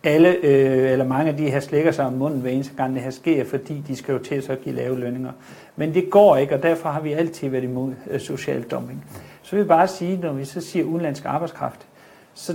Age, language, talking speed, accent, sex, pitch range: 60-79, Danish, 240 wpm, native, male, 135-170 Hz